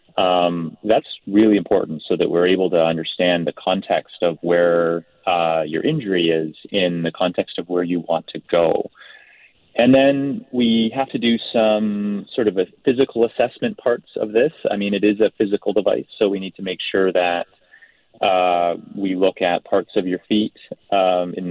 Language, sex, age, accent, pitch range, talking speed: English, male, 30-49, American, 85-110 Hz, 180 wpm